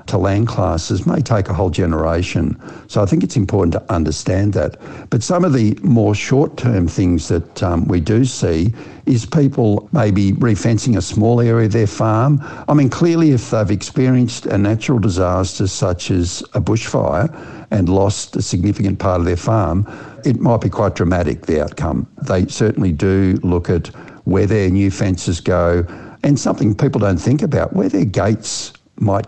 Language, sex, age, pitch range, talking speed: English, male, 60-79, 95-120 Hz, 175 wpm